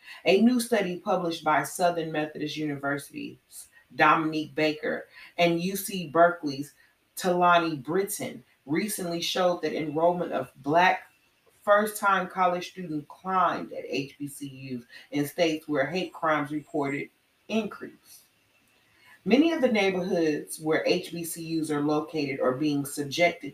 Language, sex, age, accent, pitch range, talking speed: English, female, 30-49, American, 150-180 Hz, 115 wpm